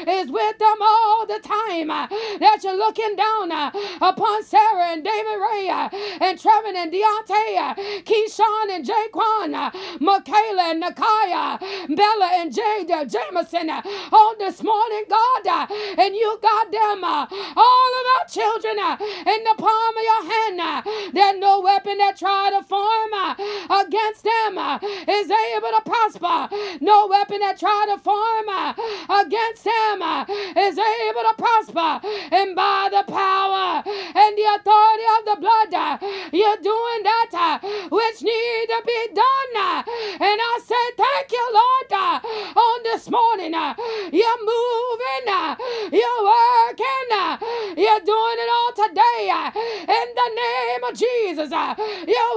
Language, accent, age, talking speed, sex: English, American, 30-49, 150 wpm, female